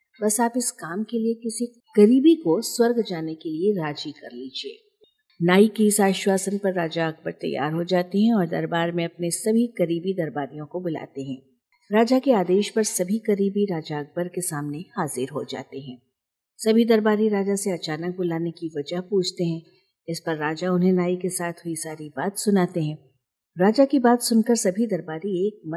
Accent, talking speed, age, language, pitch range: native, 185 wpm, 50-69, Hindi, 155-205 Hz